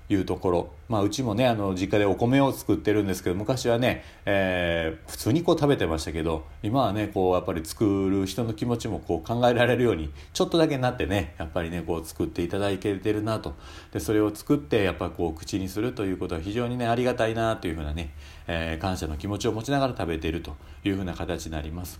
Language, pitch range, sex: Japanese, 85-125 Hz, male